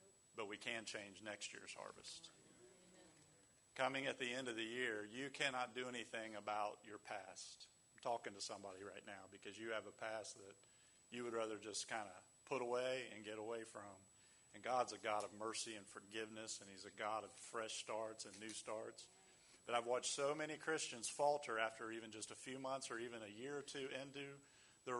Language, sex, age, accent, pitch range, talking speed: English, male, 40-59, American, 110-130 Hz, 200 wpm